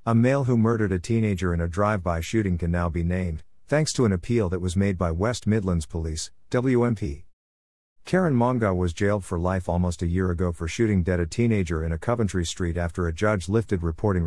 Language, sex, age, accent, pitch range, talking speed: English, male, 50-69, American, 85-110 Hz, 210 wpm